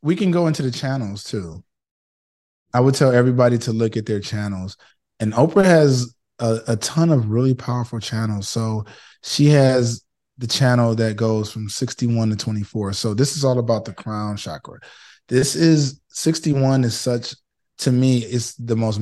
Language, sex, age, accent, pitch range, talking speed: English, male, 20-39, American, 110-130 Hz, 175 wpm